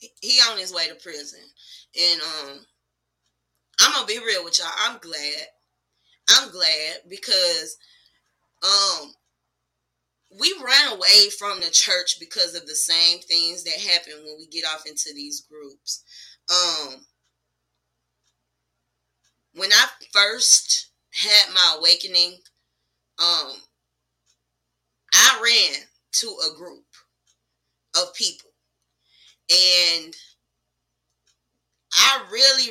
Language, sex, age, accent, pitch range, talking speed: English, female, 20-39, American, 145-220 Hz, 110 wpm